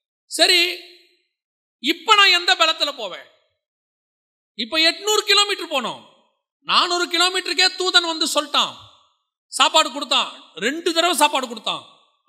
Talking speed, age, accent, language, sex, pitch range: 100 wpm, 30-49, native, Tamil, male, 190-315 Hz